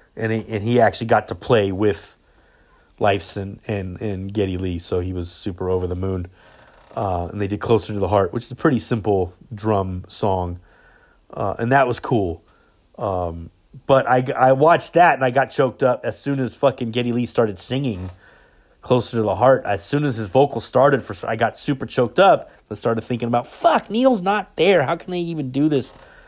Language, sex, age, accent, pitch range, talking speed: English, male, 30-49, American, 105-165 Hz, 210 wpm